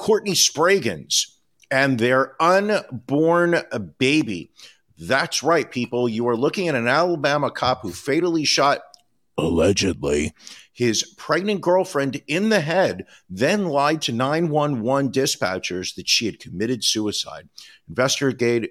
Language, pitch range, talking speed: English, 105-140 Hz, 120 wpm